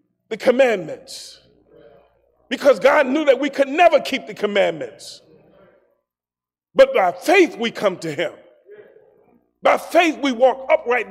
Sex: male